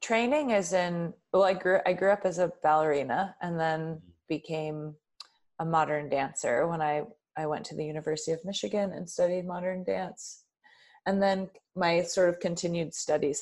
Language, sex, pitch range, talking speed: English, female, 155-190 Hz, 165 wpm